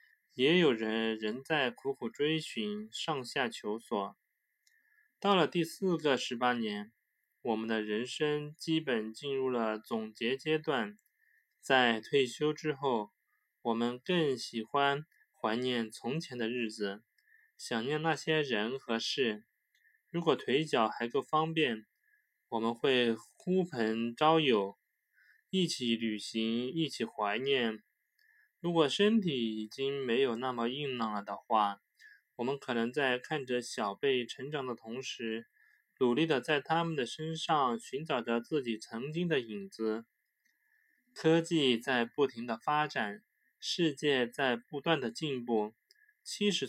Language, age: Chinese, 20-39